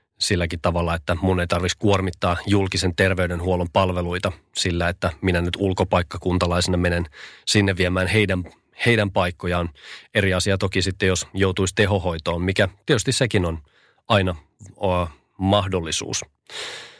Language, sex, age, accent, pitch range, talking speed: Finnish, male, 30-49, native, 90-105 Hz, 125 wpm